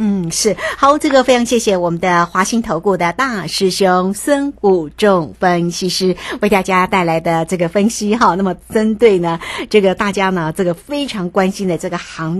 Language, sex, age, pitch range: Chinese, female, 50-69, 175-220 Hz